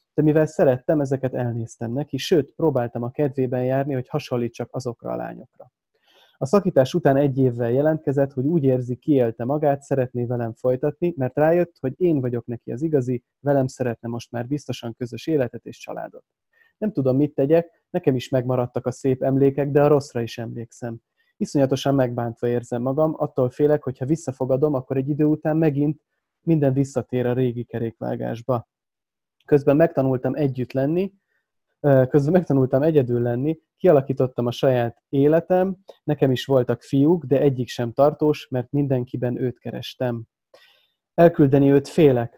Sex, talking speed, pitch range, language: male, 155 wpm, 125-150 Hz, Hungarian